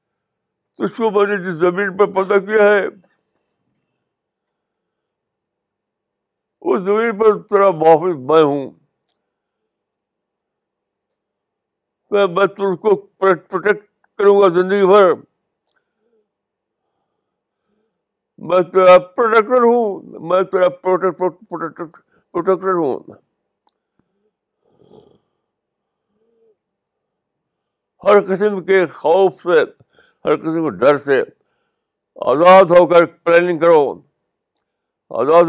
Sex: male